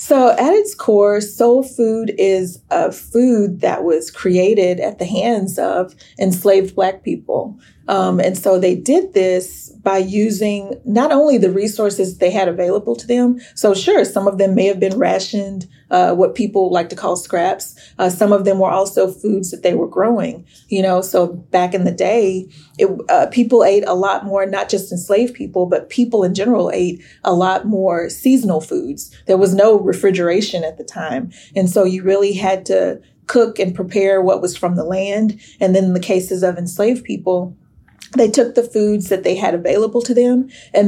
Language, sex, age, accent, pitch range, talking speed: English, female, 30-49, American, 180-210 Hz, 190 wpm